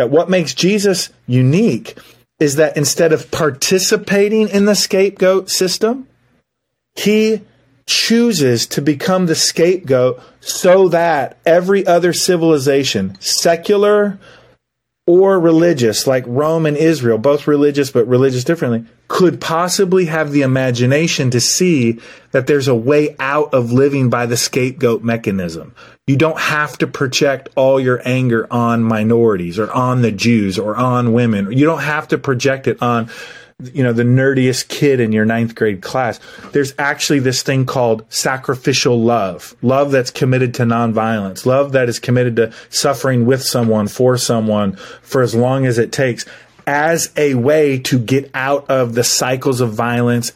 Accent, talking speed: American, 150 wpm